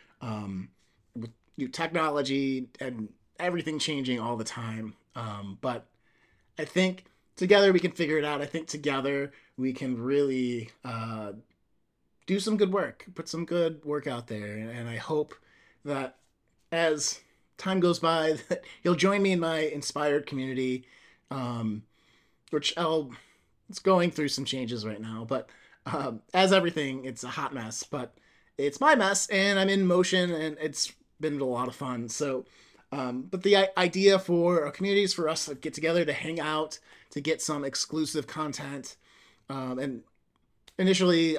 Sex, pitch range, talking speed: male, 125-165 Hz, 160 wpm